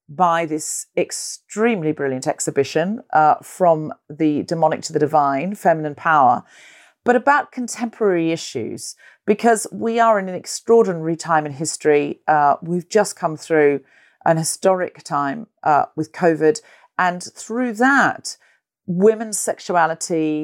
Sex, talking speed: female, 125 wpm